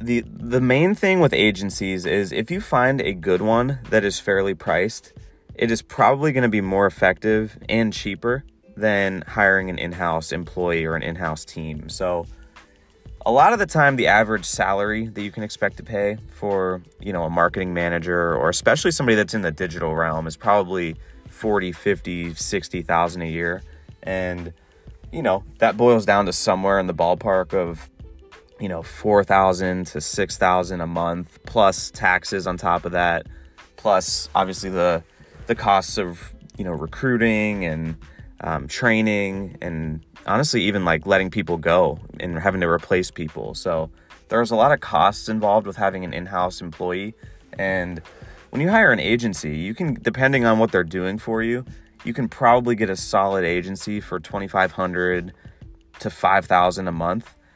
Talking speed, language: 175 wpm, English